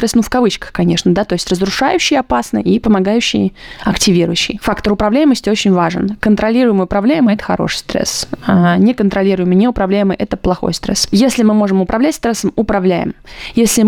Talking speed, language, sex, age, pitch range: 145 wpm, Russian, female, 20-39, 180-225 Hz